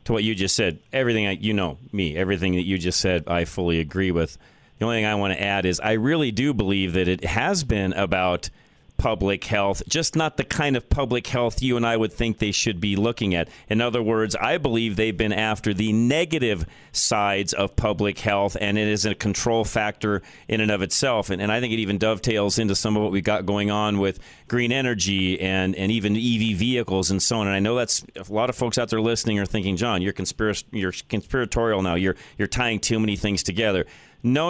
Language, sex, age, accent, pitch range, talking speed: English, male, 40-59, American, 100-125 Hz, 230 wpm